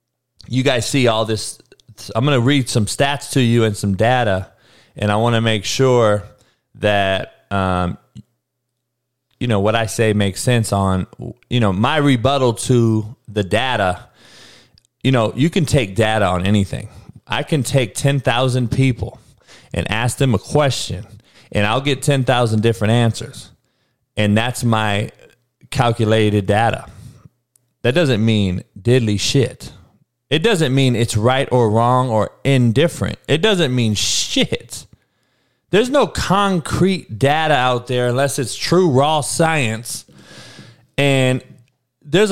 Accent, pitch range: American, 110-145 Hz